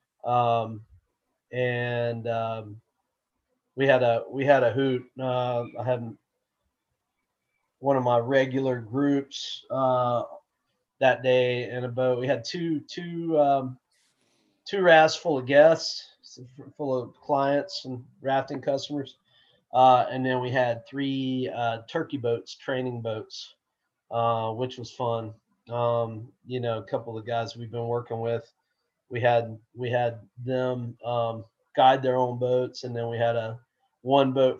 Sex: male